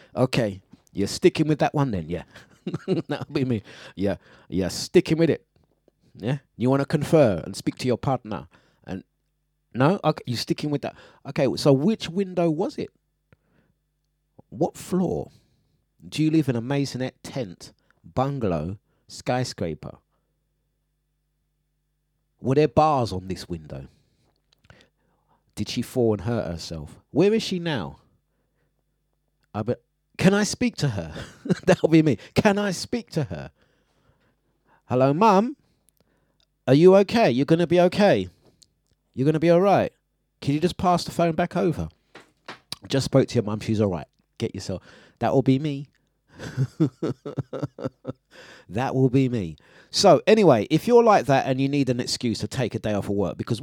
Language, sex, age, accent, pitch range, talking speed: English, male, 30-49, British, 115-165 Hz, 160 wpm